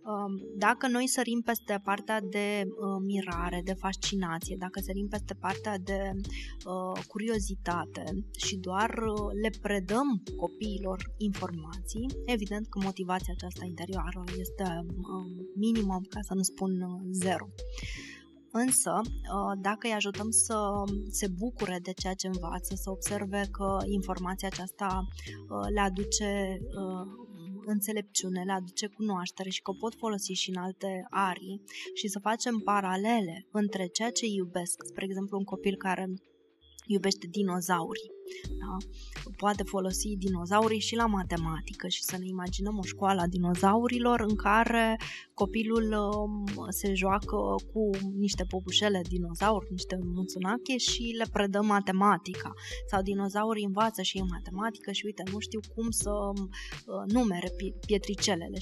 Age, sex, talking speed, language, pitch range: 20-39, female, 125 wpm, Romanian, 185-210 Hz